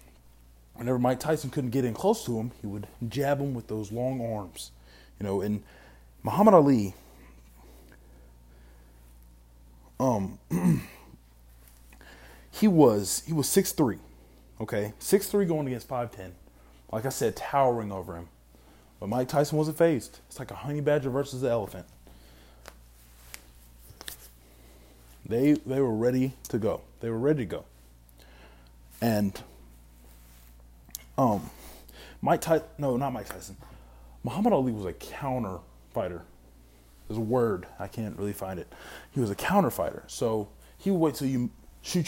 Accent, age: American, 20-39